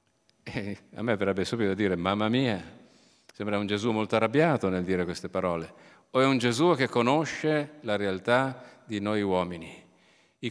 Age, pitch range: 50-69, 105-145 Hz